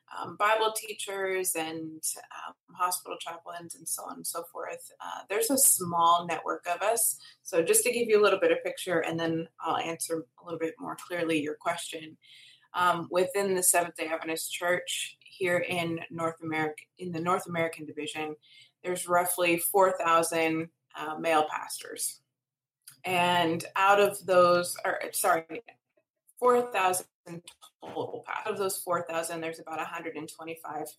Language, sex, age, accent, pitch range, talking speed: English, female, 20-39, American, 160-190 Hz, 145 wpm